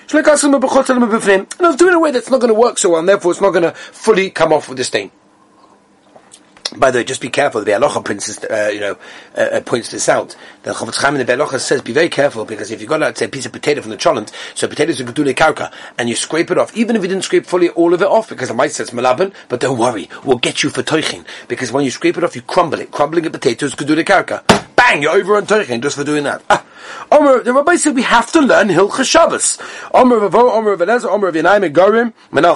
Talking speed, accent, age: 240 wpm, British, 30-49